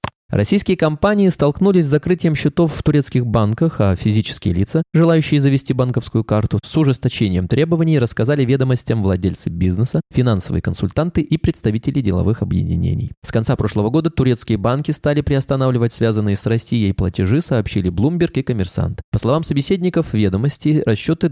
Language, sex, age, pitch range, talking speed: Russian, male, 20-39, 100-150 Hz, 140 wpm